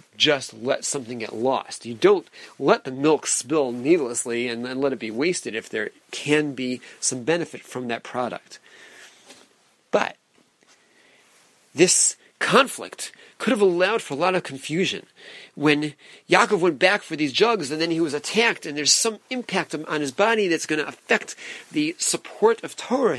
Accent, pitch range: American, 140-200 Hz